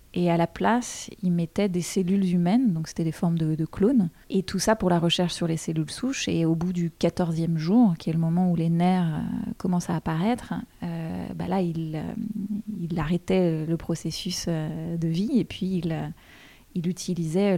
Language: French